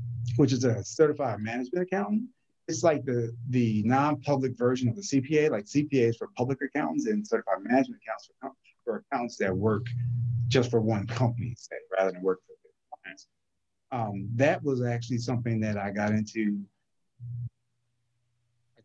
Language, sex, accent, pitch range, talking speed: English, male, American, 110-145 Hz, 160 wpm